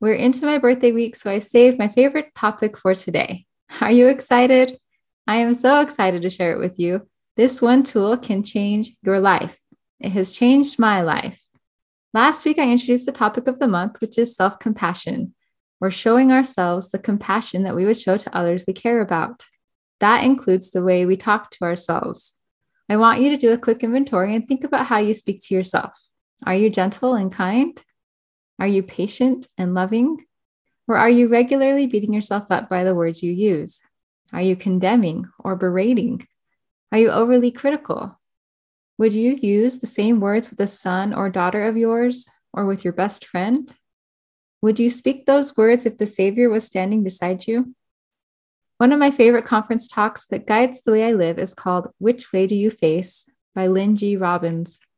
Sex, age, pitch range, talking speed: female, 10-29, 190-245 Hz, 190 wpm